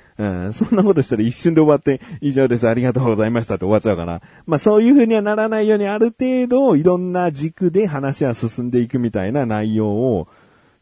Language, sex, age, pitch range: Japanese, male, 30-49, 95-155 Hz